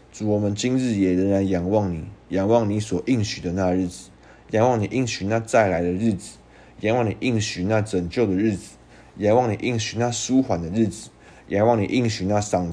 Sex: male